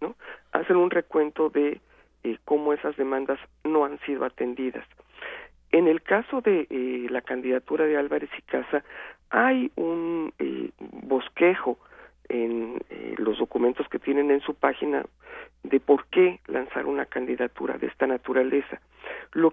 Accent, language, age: Mexican, Spanish, 50-69